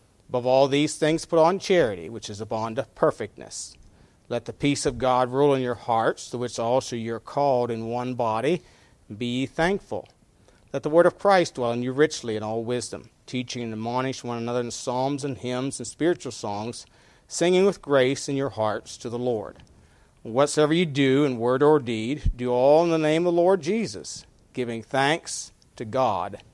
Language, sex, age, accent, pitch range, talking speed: English, male, 40-59, American, 110-135 Hz, 195 wpm